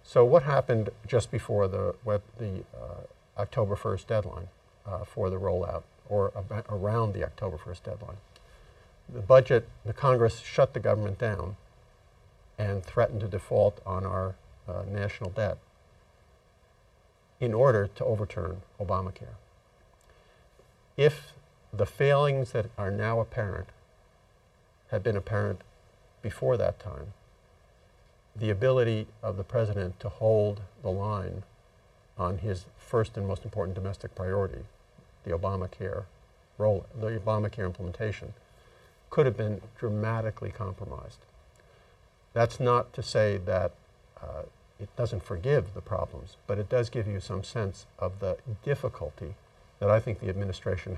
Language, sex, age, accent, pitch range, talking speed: English, male, 50-69, American, 95-115 Hz, 130 wpm